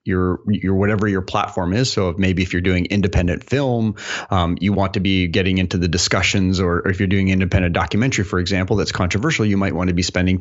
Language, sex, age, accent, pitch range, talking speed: English, male, 30-49, American, 90-110 Hz, 230 wpm